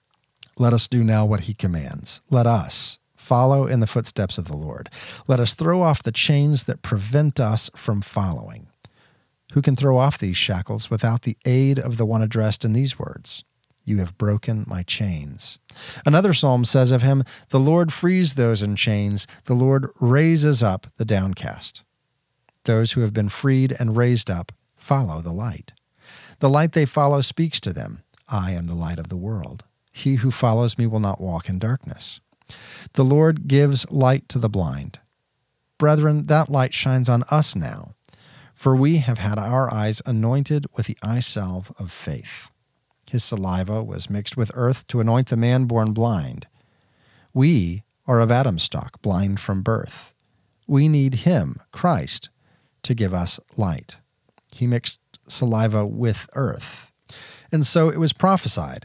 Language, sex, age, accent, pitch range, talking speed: English, male, 40-59, American, 105-135 Hz, 165 wpm